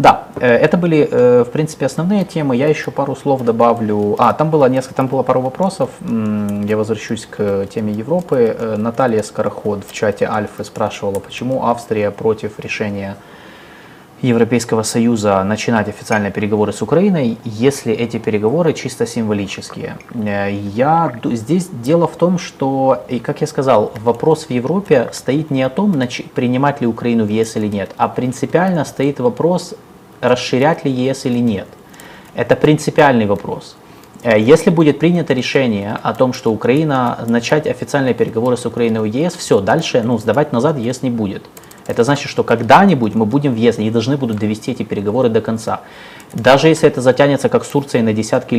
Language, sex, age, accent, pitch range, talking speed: Russian, male, 20-39, native, 110-150 Hz, 165 wpm